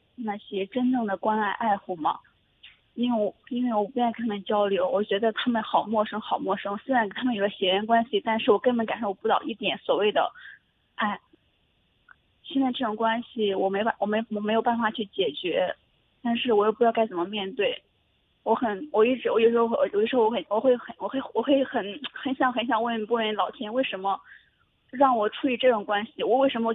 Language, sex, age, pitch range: Chinese, female, 20-39, 210-255 Hz